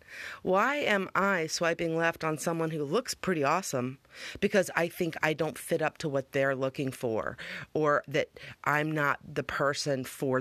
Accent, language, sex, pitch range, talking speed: American, English, female, 140-180 Hz, 175 wpm